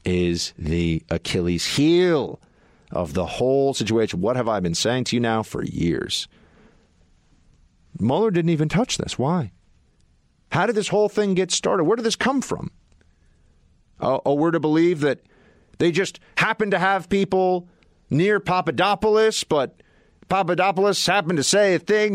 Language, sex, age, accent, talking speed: English, male, 50-69, American, 155 wpm